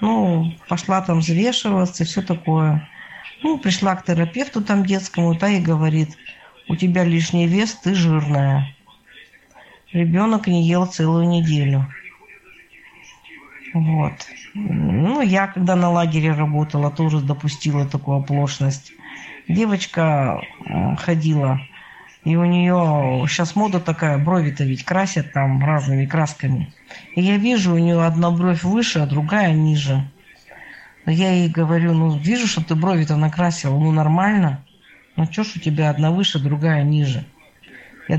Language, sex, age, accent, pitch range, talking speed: Russian, female, 50-69, native, 150-180 Hz, 135 wpm